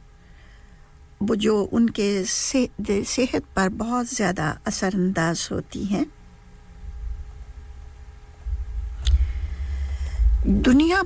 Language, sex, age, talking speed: English, female, 60-79, 60 wpm